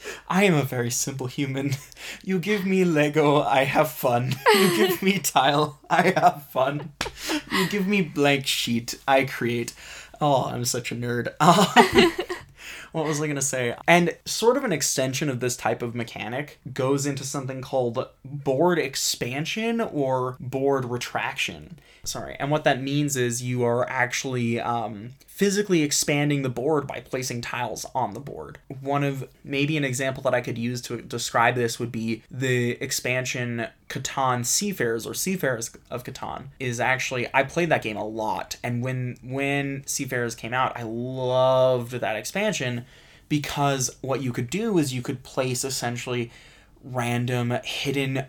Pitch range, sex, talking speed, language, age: 120-145 Hz, male, 160 wpm, English, 20-39